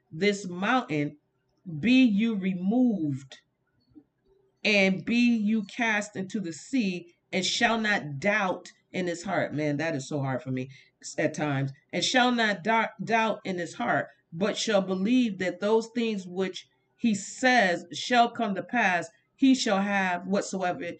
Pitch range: 170-230 Hz